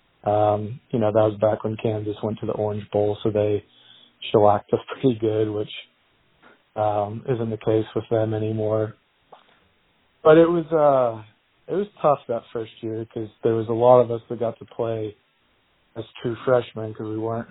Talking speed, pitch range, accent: 185 wpm, 110-115 Hz, American